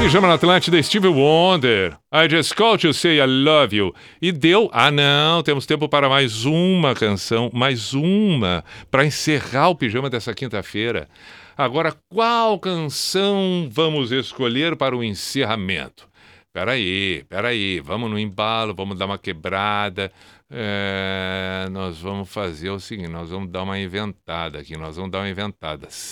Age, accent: 50-69, Brazilian